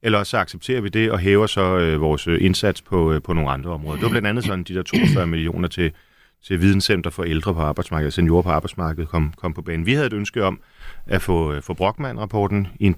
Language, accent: Danish, native